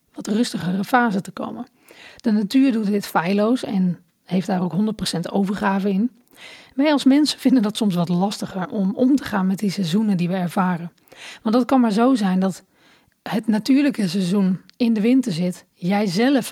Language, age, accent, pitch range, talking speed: Dutch, 40-59, Dutch, 190-245 Hz, 185 wpm